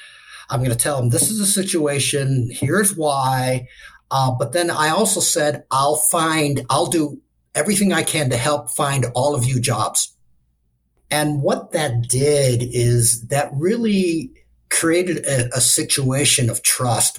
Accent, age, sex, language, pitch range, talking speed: American, 50-69, male, English, 120-155 Hz, 155 wpm